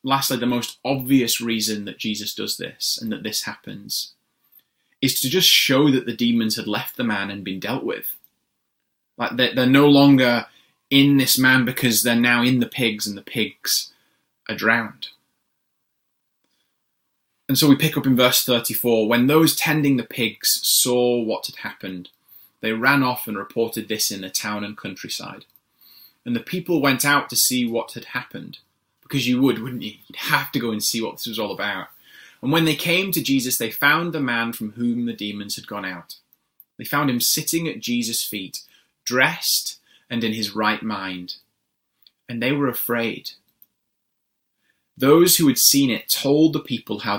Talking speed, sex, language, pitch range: 185 wpm, male, English, 110-135 Hz